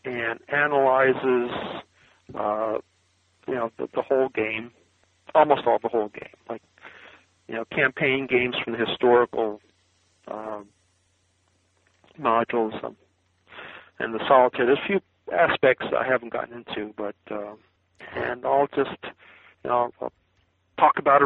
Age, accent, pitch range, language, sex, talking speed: 50-69, American, 105-130 Hz, English, male, 135 wpm